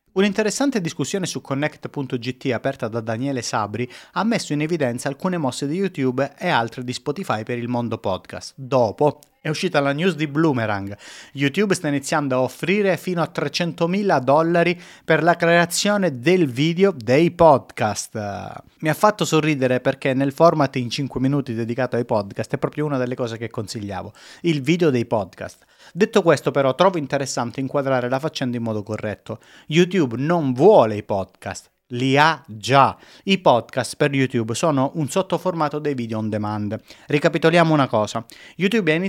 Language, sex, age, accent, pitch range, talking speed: Italian, male, 30-49, native, 125-170 Hz, 160 wpm